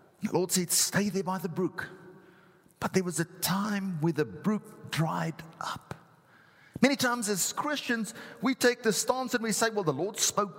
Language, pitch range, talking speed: English, 145-195 Hz, 185 wpm